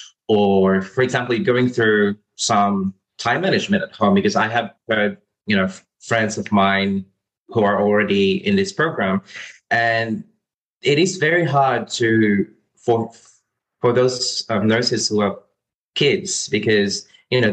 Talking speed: 145 wpm